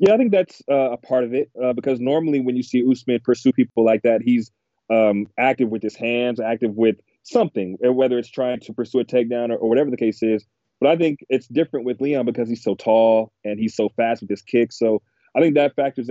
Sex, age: male, 30-49